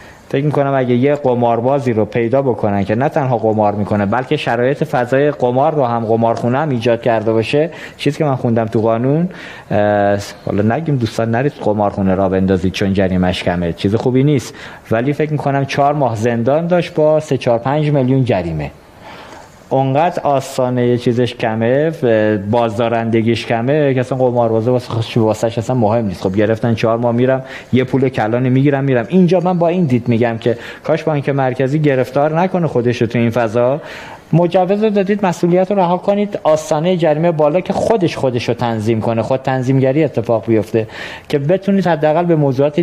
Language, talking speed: Persian, 175 wpm